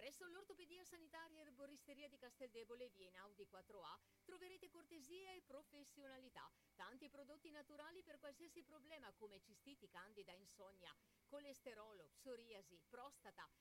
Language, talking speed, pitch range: Italian, 125 wpm, 220-325 Hz